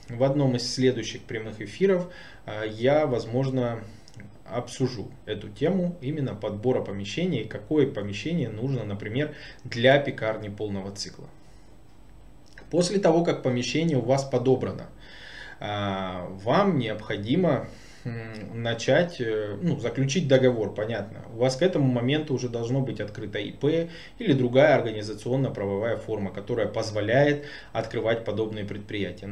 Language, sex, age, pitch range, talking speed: Russian, male, 20-39, 110-135 Hz, 115 wpm